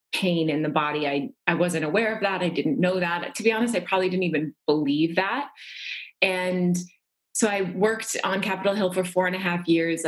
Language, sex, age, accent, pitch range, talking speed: English, female, 20-39, American, 160-190 Hz, 215 wpm